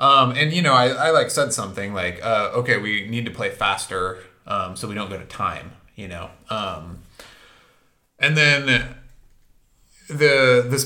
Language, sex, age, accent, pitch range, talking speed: English, male, 30-49, American, 90-120 Hz, 170 wpm